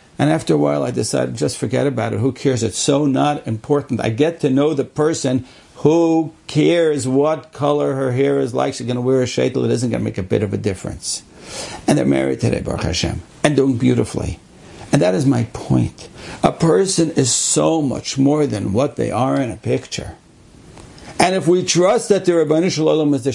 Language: English